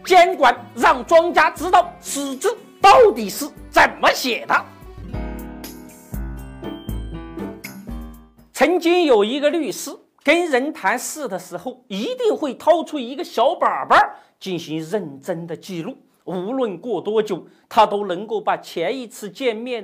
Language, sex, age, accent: Chinese, male, 50-69, native